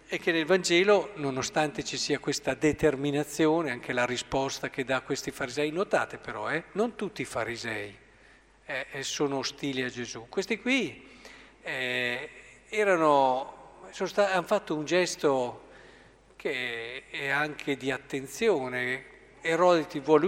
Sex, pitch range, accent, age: male, 135-165 Hz, native, 50-69